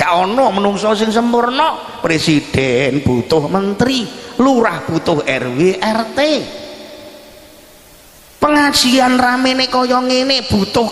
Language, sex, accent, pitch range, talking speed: Indonesian, male, native, 155-240 Hz, 80 wpm